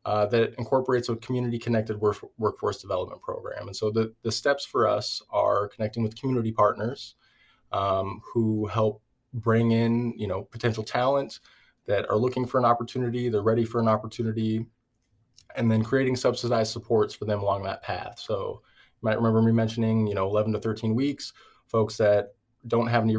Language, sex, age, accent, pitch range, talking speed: English, male, 20-39, American, 105-120 Hz, 175 wpm